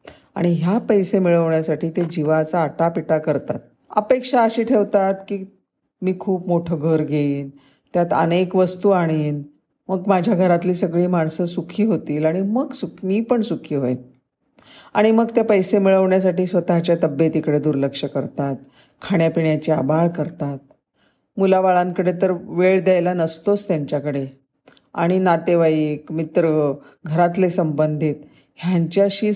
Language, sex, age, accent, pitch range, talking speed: Marathi, female, 40-59, native, 155-195 Hz, 125 wpm